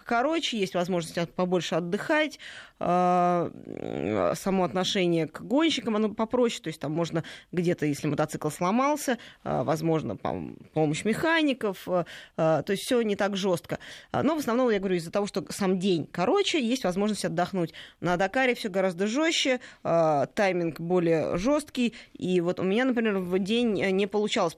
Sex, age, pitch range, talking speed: female, 20-39, 170-215 Hz, 145 wpm